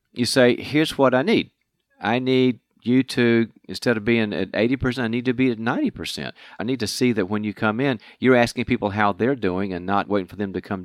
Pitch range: 100-125 Hz